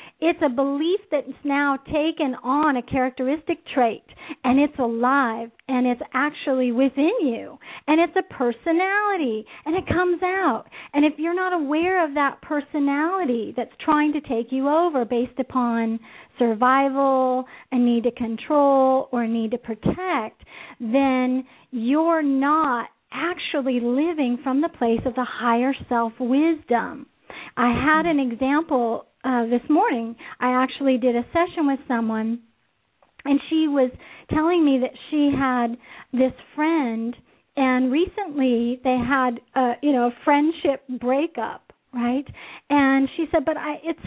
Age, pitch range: 50-69, 250-320 Hz